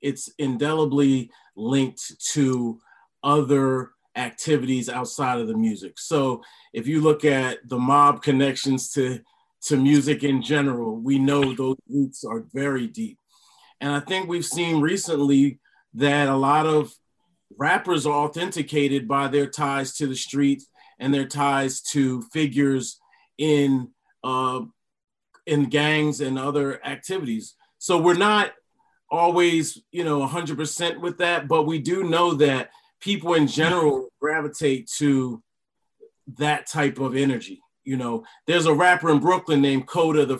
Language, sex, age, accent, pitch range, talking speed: English, male, 30-49, American, 135-155 Hz, 140 wpm